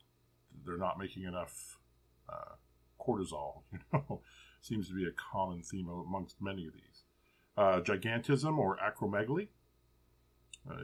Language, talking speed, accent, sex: English, 125 wpm, American, male